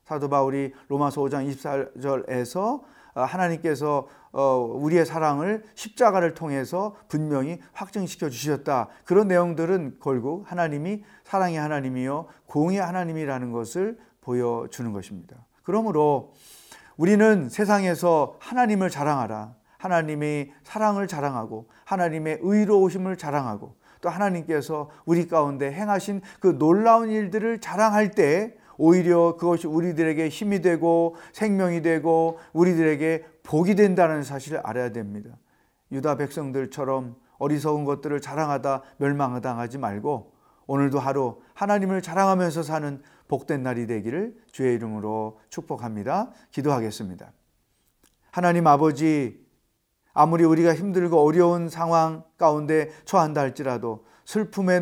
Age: 40-59